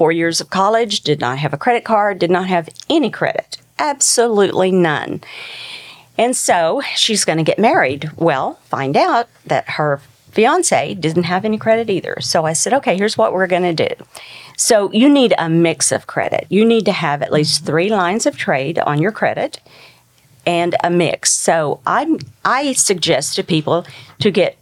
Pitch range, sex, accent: 150-210 Hz, female, American